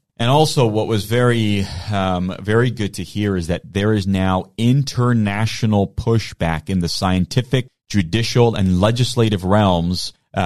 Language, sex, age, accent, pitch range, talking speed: English, male, 30-49, American, 95-120 Hz, 145 wpm